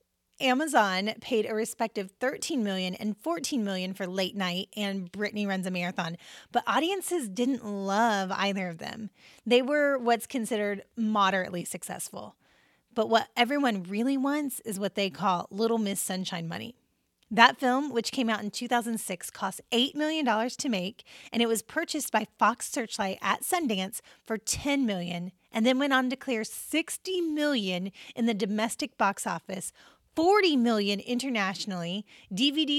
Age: 30-49